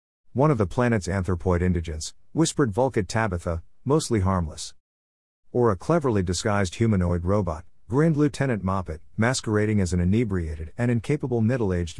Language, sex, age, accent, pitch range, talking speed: English, male, 50-69, American, 85-115 Hz, 135 wpm